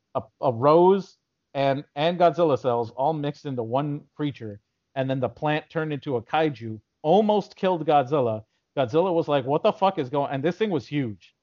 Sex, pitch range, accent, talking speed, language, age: male, 130-165 Hz, American, 195 wpm, English, 40-59